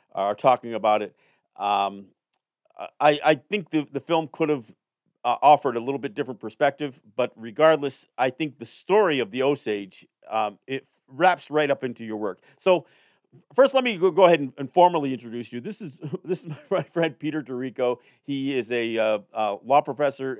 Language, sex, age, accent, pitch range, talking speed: English, male, 50-69, American, 115-155 Hz, 190 wpm